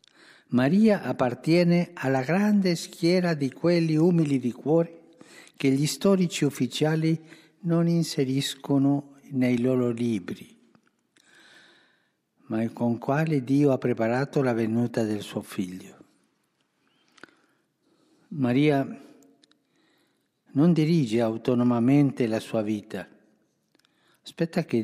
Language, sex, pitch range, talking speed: Italian, male, 120-160 Hz, 95 wpm